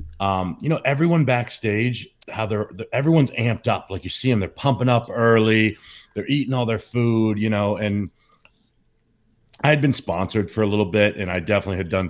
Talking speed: 200 wpm